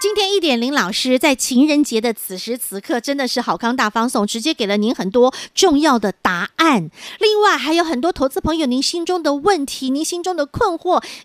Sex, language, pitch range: female, Chinese, 225-335 Hz